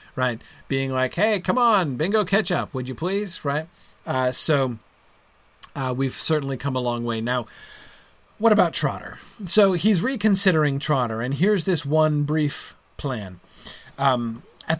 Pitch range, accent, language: 130-185 Hz, American, English